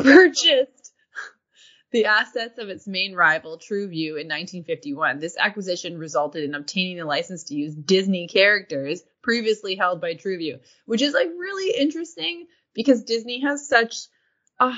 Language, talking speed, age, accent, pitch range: English, 140 wpm, 20-39, American, 155-215 Hz